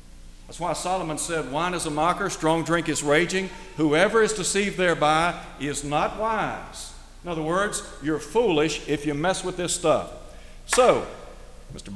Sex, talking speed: male, 160 wpm